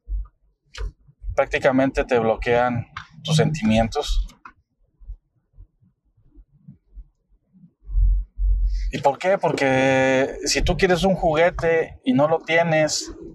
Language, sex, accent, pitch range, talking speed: Spanish, male, Mexican, 110-160 Hz, 80 wpm